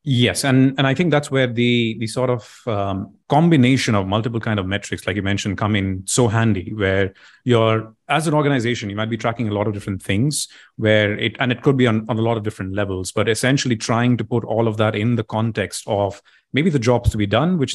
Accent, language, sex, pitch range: Indian, English, male, 105-125 Hz